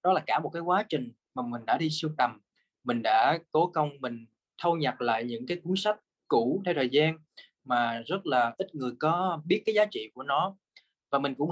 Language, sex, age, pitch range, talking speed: Vietnamese, male, 20-39, 135-185 Hz, 230 wpm